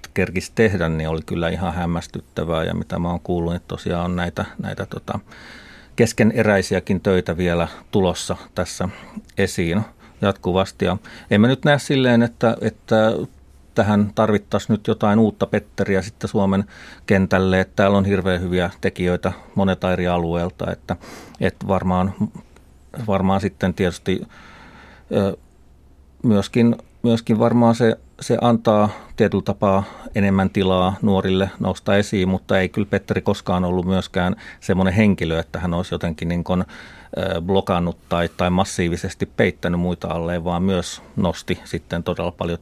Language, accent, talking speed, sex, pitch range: Finnish, native, 135 wpm, male, 85-100 Hz